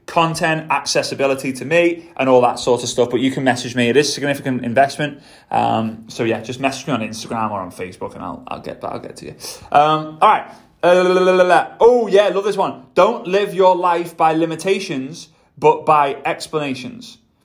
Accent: British